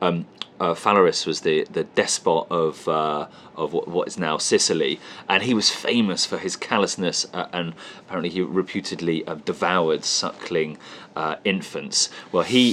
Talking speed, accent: 160 wpm, British